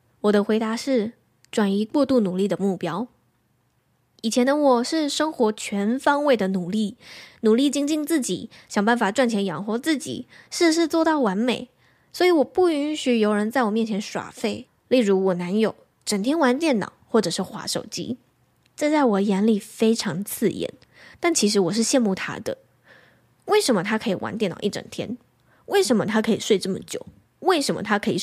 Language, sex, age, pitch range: Chinese, female, 10-29, 195-260 Hz